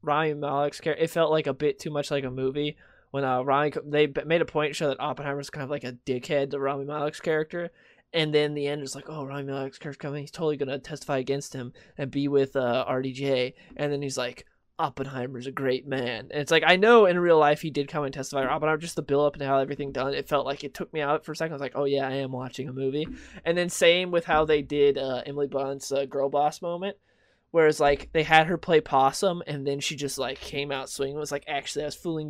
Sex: male